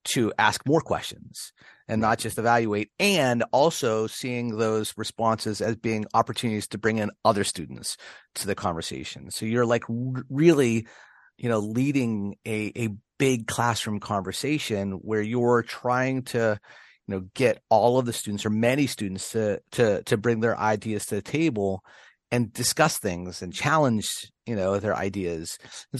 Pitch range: 105-125 Hz